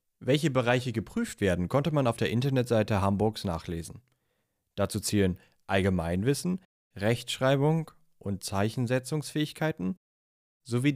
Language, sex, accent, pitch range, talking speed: German, male, German, 100-140 Hz, 100 wpm